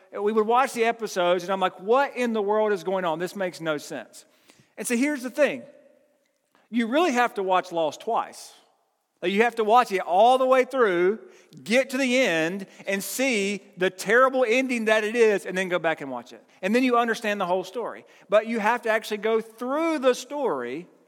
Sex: male